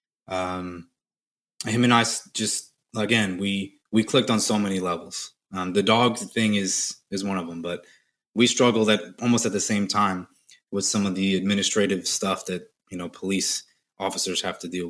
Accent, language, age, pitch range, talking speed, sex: American, English, 20-39, 90-105 Hz, 180 wpm, male